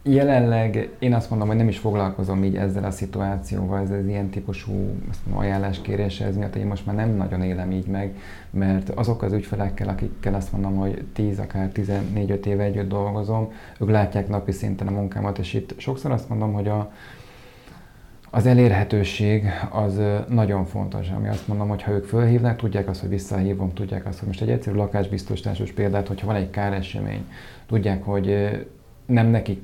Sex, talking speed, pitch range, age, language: male, 175 wpm, 100-110 Hz, 30-49, Hungarian